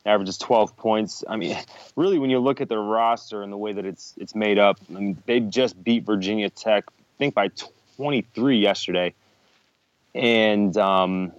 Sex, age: male, 20-39